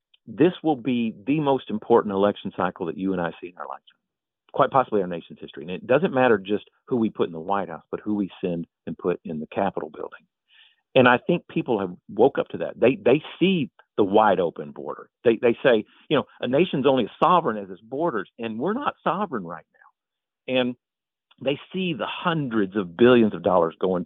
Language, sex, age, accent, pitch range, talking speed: English, male, 50-69, American, 100-135 Hz, 220 wpm